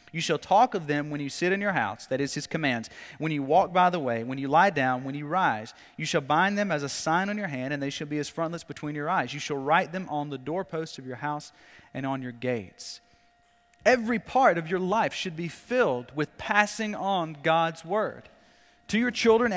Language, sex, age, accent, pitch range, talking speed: English, male, 30-49, American, 130-195 Hz, 235 wpm